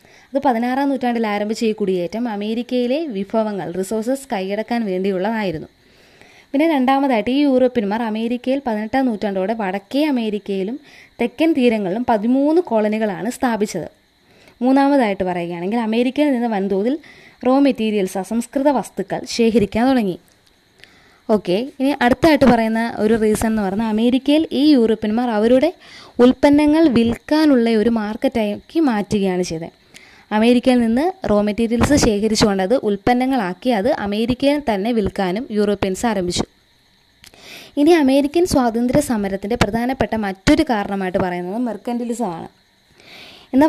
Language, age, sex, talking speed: Malayalam, 20-39, female, 105 wpm